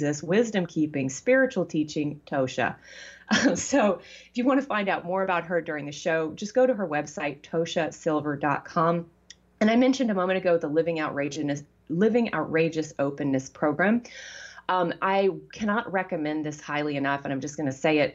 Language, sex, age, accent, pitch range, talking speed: English, female, 30-49, American, 140-180 Hz, 170 wpm